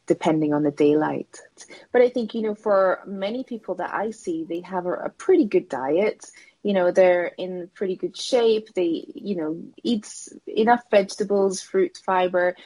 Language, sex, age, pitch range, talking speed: Dutch, female, 20-39, 175-210 Hz, 175 wpm